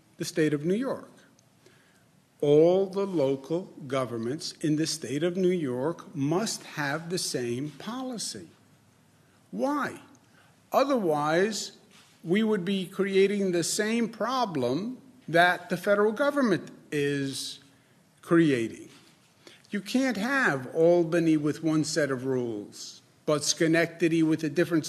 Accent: American